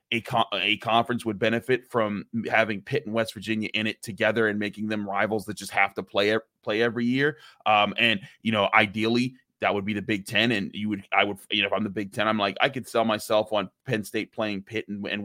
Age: 20-39